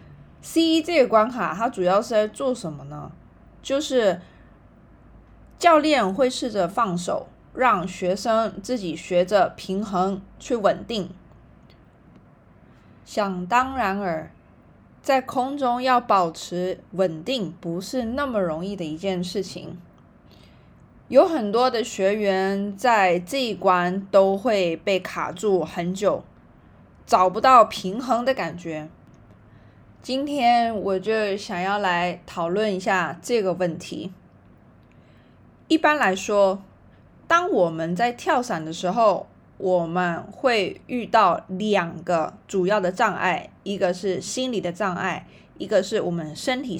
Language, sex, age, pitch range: Chinese, female, 20-39, 180-240 Hz